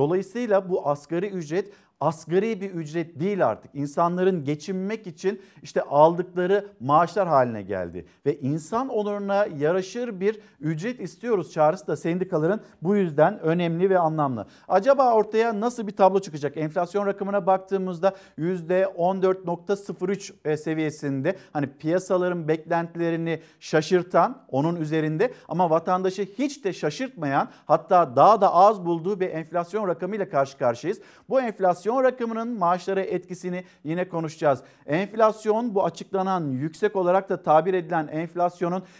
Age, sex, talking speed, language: 50-69, male, 125 wpm, Turkish